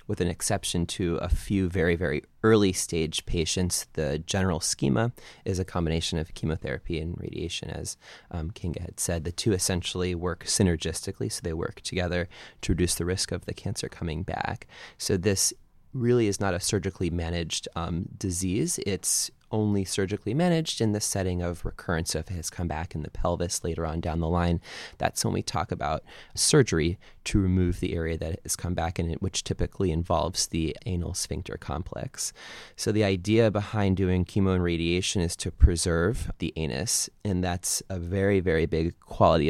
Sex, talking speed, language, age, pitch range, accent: male, 190 wpm, English, 20-39, 85-100 Hz, American